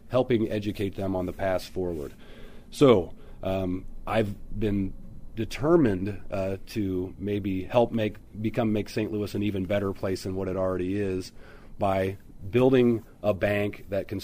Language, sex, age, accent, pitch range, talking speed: English, male, 40-59, American, 95-110 Hz, 150 wpm